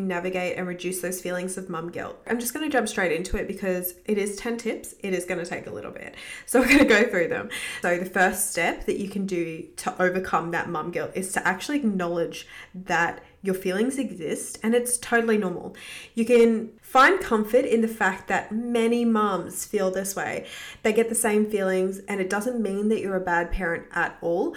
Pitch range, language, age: 180-220 Hz, English, 20-39